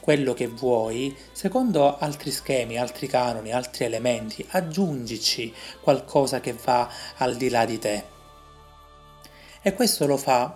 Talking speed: 130 wpm